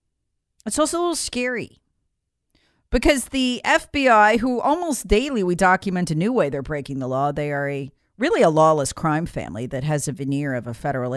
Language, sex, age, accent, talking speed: English, female, 40-59, American, 190 wpm